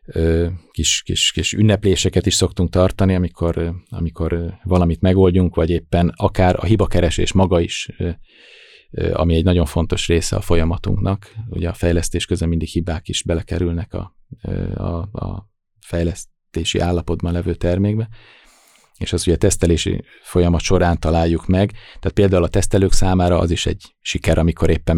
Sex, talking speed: male, 140 wpm